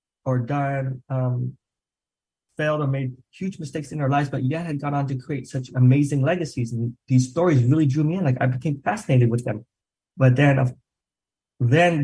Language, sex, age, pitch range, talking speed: English, male, 20-39, 125-140 Hz, 185 wpm